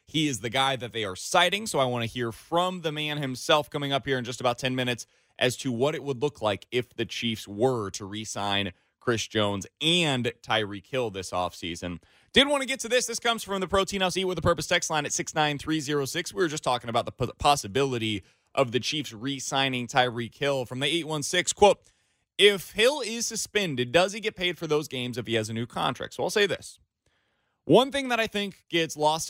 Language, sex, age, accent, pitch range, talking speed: English, male, 20-39, American, 120-195 Hz, 225 wpm